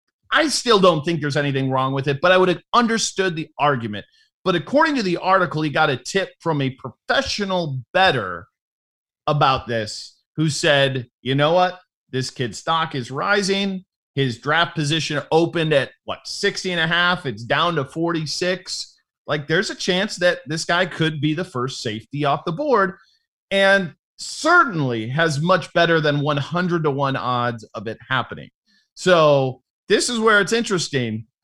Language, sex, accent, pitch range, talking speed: English, male, American, 150-215 Hz, 170 wpm